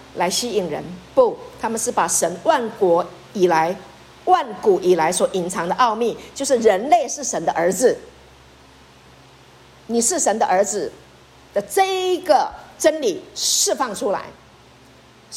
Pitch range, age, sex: 225-325 Hz, 50-69, female